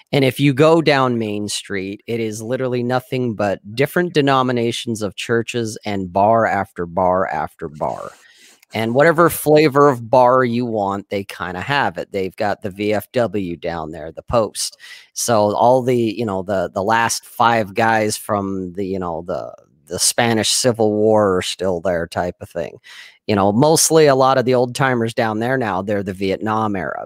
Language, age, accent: English, 40-59, American